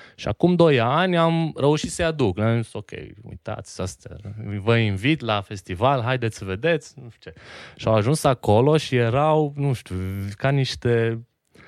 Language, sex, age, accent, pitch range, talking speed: Romanian, male, 20-39, native, 95-120 Hz, 160 wpm